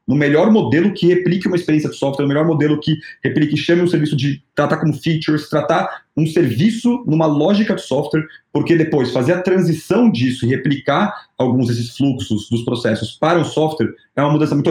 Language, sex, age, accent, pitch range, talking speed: Portuguese, male, 30-49, Brazilian, 115-150 Hz, 200 wpm